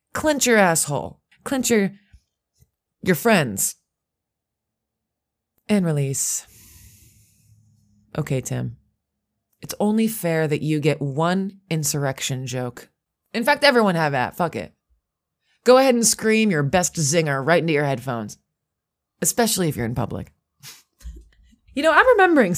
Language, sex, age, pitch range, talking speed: English, female, 20-39, 135-215 Hz, 125 wpm